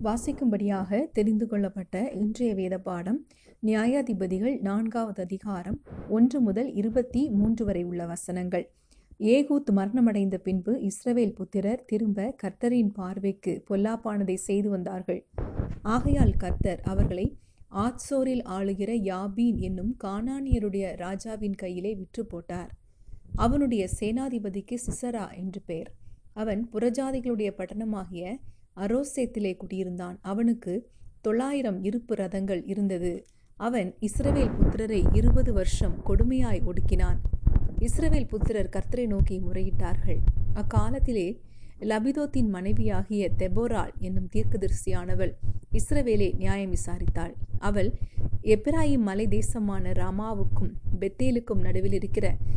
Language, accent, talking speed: Tamil, native, 90 wpm